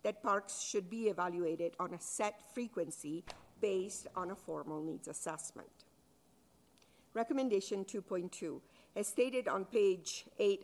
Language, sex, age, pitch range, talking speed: English, female, 50-69, 175-240 Hz, 125 wpm